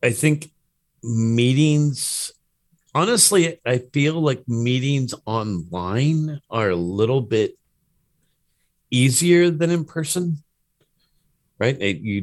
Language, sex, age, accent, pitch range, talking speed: English, male, 50-69, American, 105-145 Hz, 95 wpm